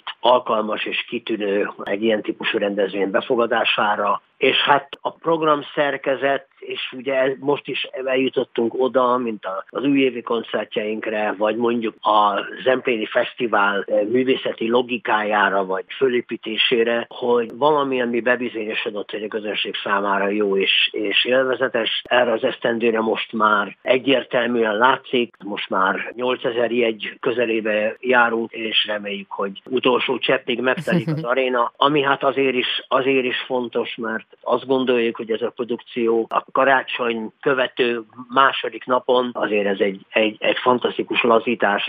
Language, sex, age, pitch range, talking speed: Hungarian, male, 50-69, 110-130 Hz, 130 wpm